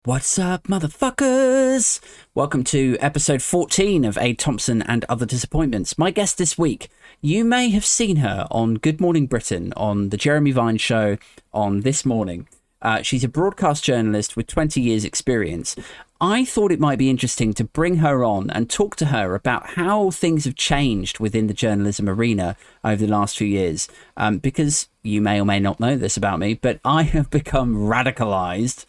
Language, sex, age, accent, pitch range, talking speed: English, male, 30-49, British, 110-155 Hz, 180 wpm